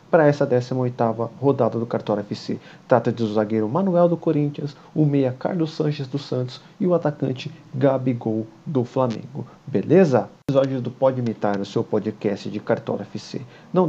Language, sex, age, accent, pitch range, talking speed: Portuguese, male, 40-59, Brazilian, 115-145 Hz, 165 wpm